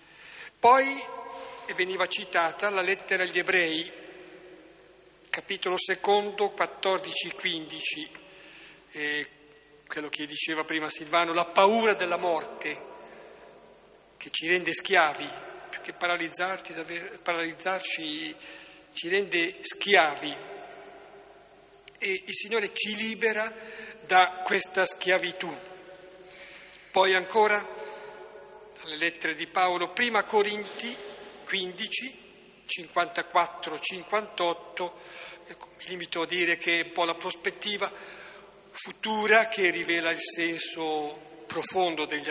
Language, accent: Italian, native